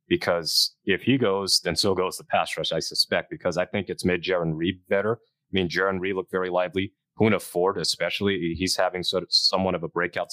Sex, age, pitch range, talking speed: male, 30-49, 85-100 Hz, 220 wpm